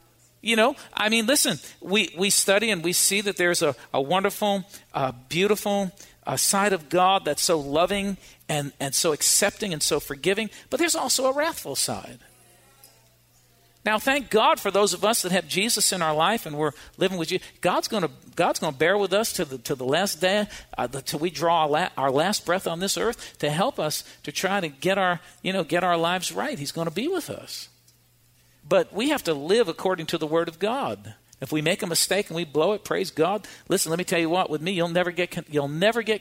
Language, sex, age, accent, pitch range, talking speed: English, male, 50-69, American, 150-200 Hz, 225 wpm